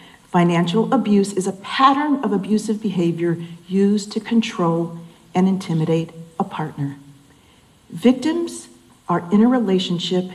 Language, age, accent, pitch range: Japanese, 40-59, American, 170-220 Hz